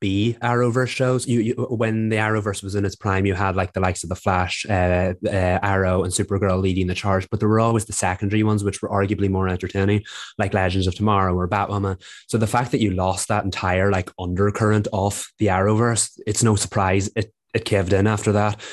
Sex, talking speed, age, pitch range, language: male, 220 wpm, 20-39, 95-105 Hz, English